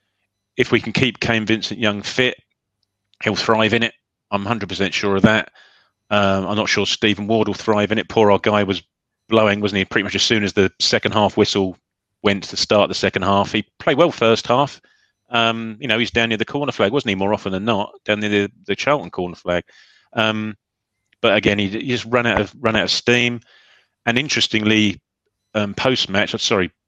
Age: 30-49